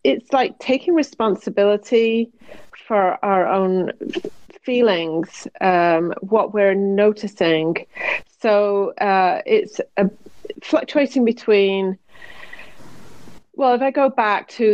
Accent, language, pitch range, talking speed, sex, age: British, English, 180-230 Hz, 95 wpm, female, 30-49